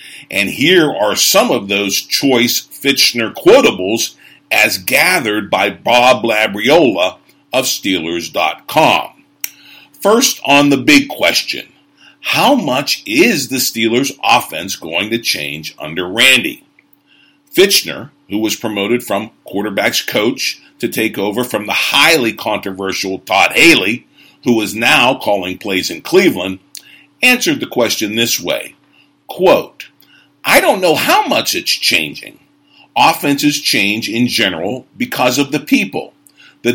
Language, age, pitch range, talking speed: English, 50-69, 105-155 Hz, 125 wpm